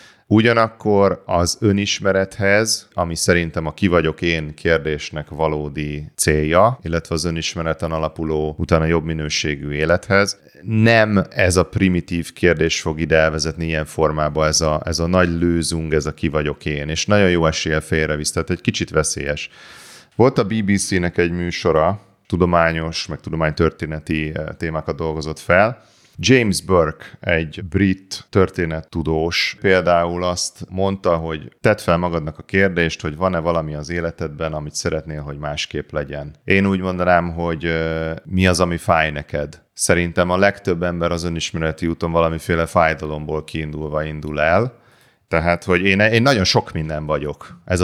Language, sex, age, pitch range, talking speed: Hungarian, male, 30-49, 80-90 Hz, 145 wpm